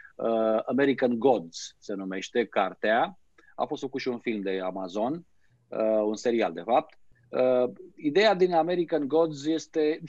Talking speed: 130 wpm